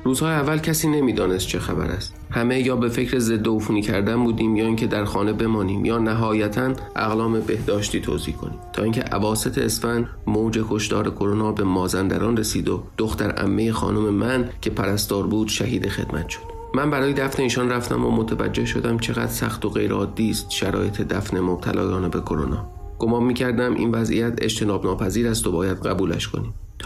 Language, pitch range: Persian, 100-115 Hz